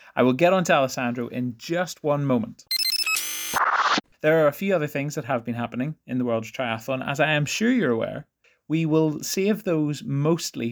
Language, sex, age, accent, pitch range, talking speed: English, male, 30-49, British, 125-160 Hz, 195 wpm